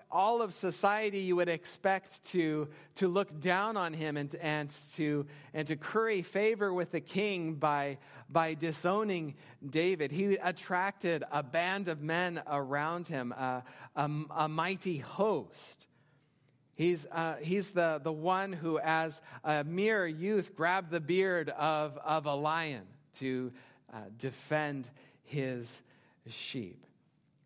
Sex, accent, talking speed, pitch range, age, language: male, American, 135 wpm, 130-175 Hz, 40-59, English